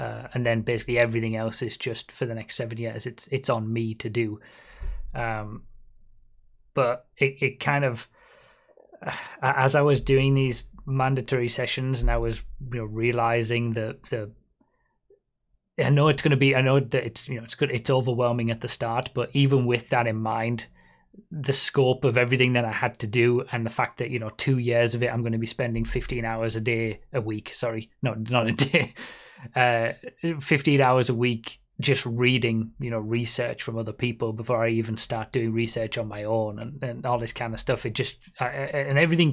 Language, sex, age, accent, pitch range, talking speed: English, male, 30-49, British, 115-135 Hz, 205 wpm